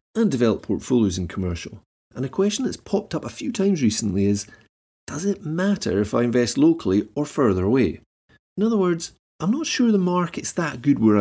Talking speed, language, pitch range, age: 200 wpm, English, 105-170 Hz, 40-59